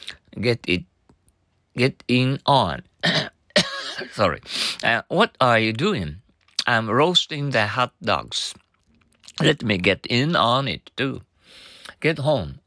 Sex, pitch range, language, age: male, 95-140 Hz, Japanese, 50-69